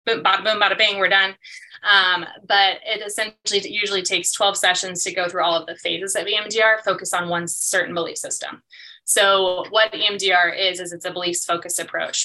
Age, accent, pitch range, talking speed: 20-39, American, 175-195 Hz, 195 wpm